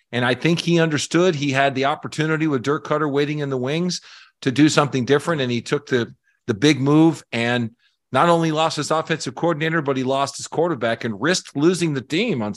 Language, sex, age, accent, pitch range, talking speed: English, male, 40-59, American, 120-155 Hz, 215 wpm